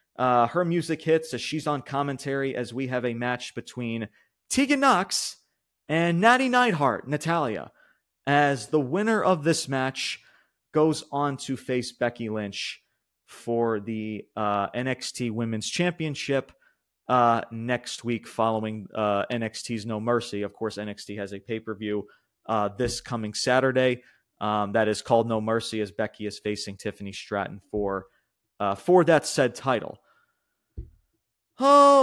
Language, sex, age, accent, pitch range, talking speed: English, male, 30-49, American, 110-145 Hz, 145 wpm